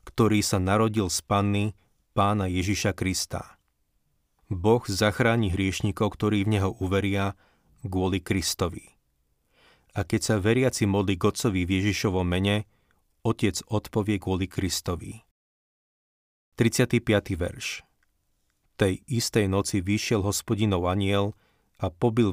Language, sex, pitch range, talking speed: Slovak, male, 95-110 Hz, 110 wpm